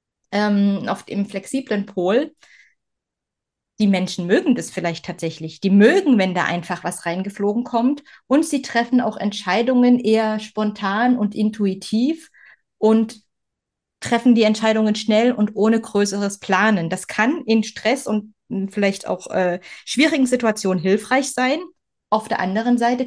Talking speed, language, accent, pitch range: 135 wpm, German, German, 200-250 Hz